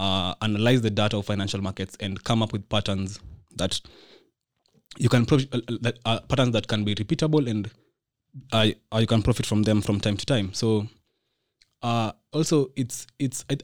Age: 20-39